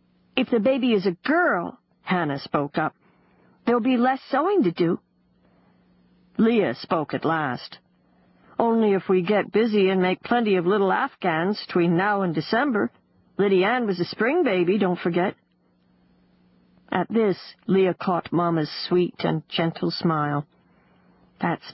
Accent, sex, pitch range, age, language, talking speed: American, female, 160-220 Hz, 50-69, English, 140 wpm